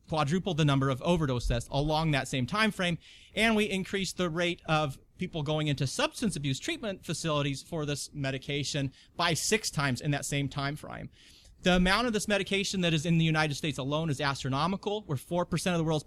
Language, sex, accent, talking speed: English, male, American, 200 wpm